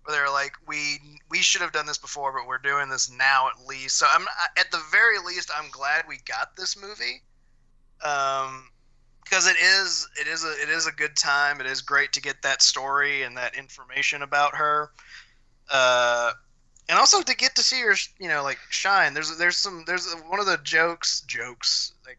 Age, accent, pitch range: 20-39, American, 130-165 Hz